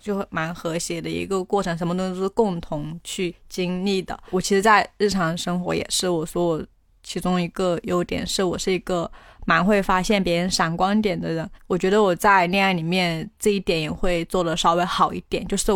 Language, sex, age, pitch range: Chinese, female, 20-39, 170-200 Hz